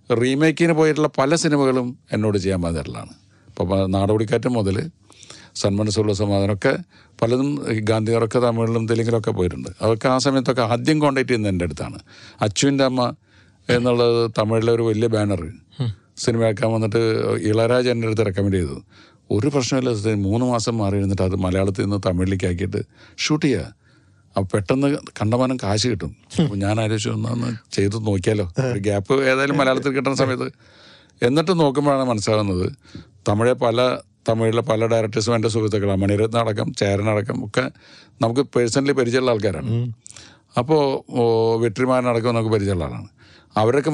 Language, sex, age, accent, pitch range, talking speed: Malayalam, male, 50-69, native, 105-130 Hz, 145 wpm